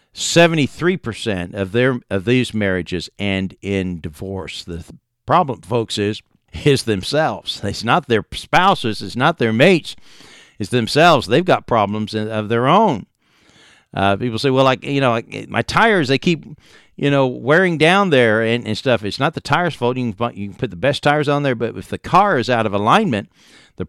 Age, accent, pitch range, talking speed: 50-69, American, 100-130 Hz, 190 wpm